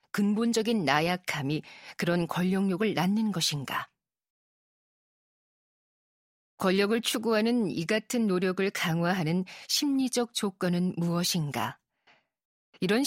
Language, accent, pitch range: Korean, native, 175-225 Hz